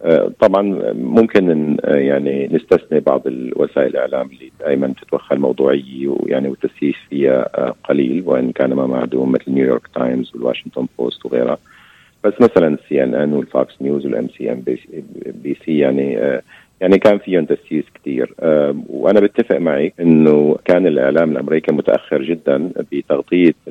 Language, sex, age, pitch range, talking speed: Arabic, male, 50-69, 70-80 Hz, 145 wpm